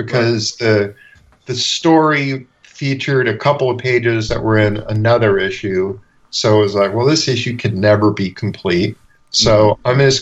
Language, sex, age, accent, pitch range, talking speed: English, male, 50-69, American, 105-120 Hz, 165 wpm